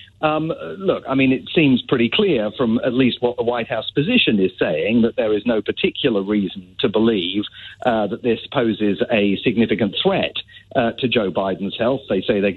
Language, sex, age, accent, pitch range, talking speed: English, male, 50-69, British, 110-135 Hz, 195 wpm